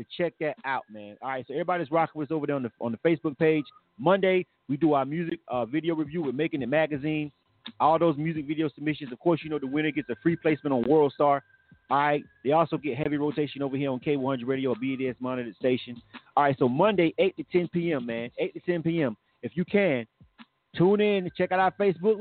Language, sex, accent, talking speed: English, male, American, 235 wpm